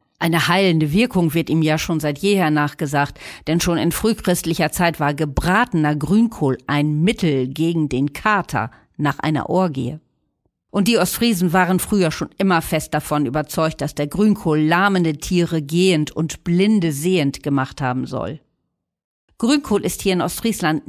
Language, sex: German, female